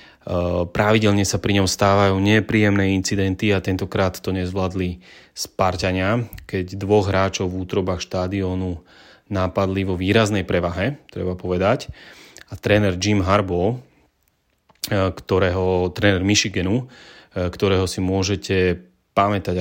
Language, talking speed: Slovak, 105 wpm